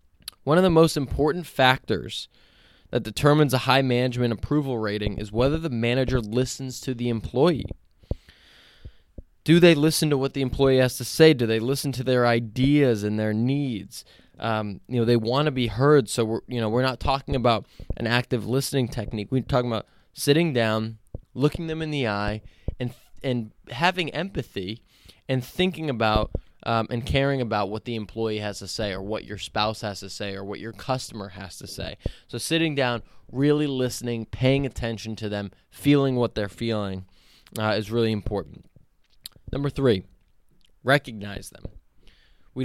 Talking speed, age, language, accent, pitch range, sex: 175 wpm, 20-39, English, American, 105-140 Hz, male